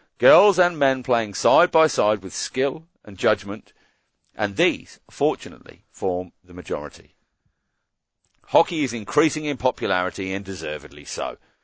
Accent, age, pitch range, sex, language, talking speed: British, 40-59, 90-120 Hz, male, English, 130 wpm